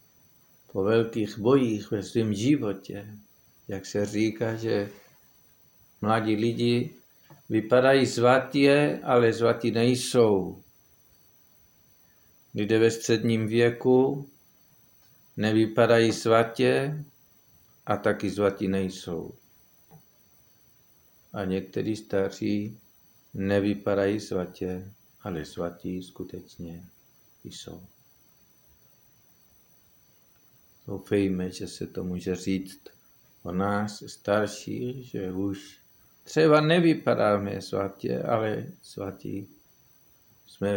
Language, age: Czech, 50-69